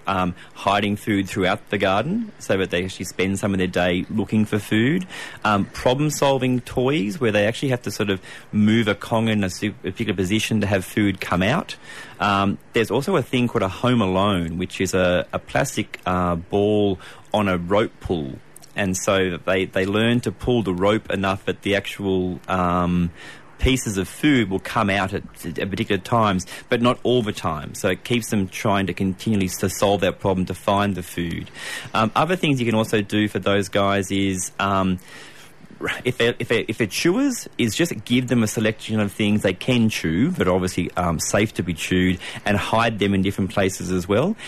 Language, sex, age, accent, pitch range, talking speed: English, male, 30-49, Australian, 95-110 Hz, 200 wpm